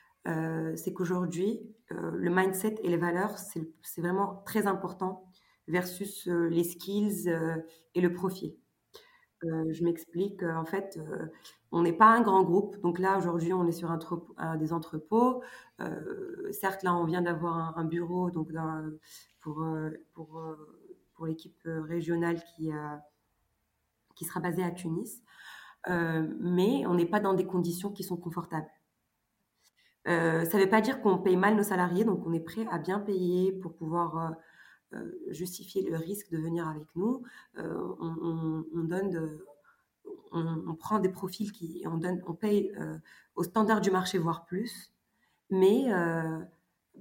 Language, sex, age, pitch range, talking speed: French, female, 20-39, 165-195 Hz, 175 wpm